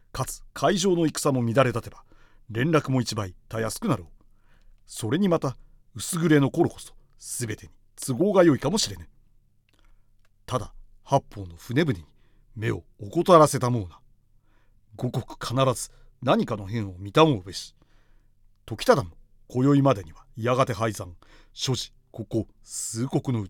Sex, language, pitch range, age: male, Japanese, 105-135 Hz, 40-59